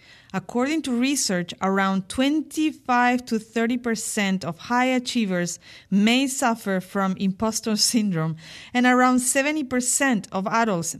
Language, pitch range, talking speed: English, 185-245 Hz, 120 wpm